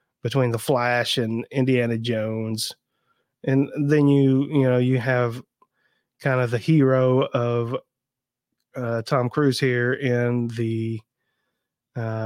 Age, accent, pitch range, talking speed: 30-49, American, 115-135 Hz, 120 wpm